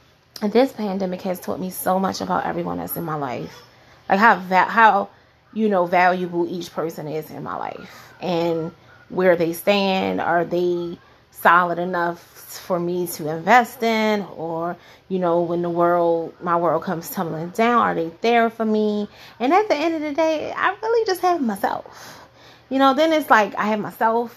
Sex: female